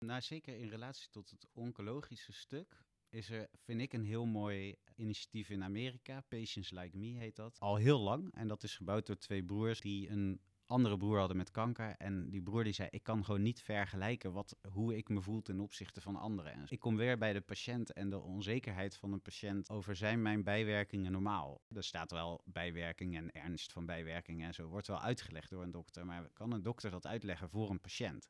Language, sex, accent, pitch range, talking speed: Dutch, male, Dutch, 95-110 Hz, 215 wpm